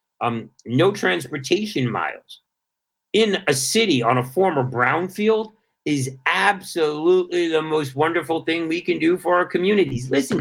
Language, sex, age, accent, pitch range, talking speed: English, male, 50-69, American, 135-210 Hz, 140 wpm